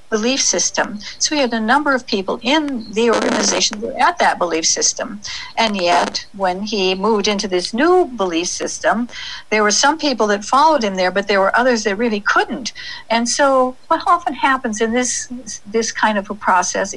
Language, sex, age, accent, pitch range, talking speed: English, female, 60-79, American, 185-235 Hz, 185 wpm